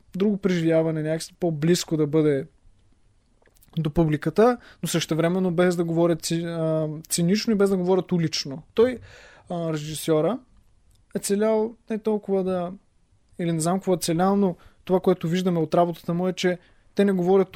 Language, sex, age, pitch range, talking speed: Bulgarian, male, 20-39, 155-195 Hz, 150 wpm